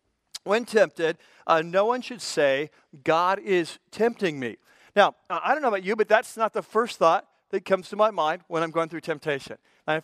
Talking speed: 210 wpm